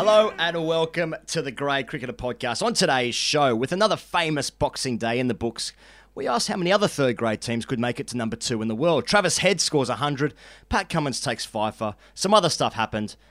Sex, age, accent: male, 30-49, Australian